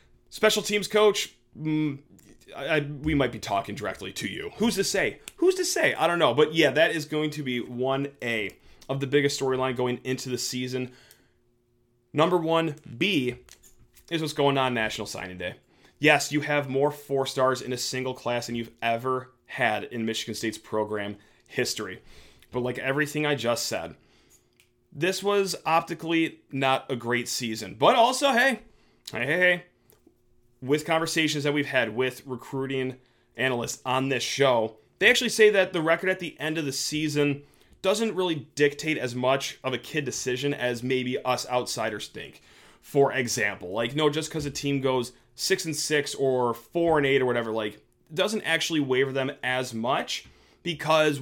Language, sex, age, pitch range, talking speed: English, male, 30-49, 125-155 Hz, 170 wpm